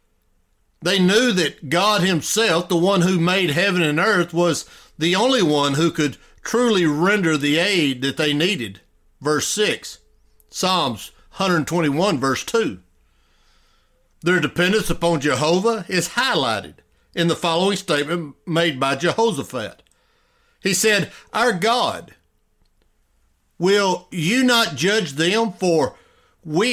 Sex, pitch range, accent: male, 130-195 Hz, American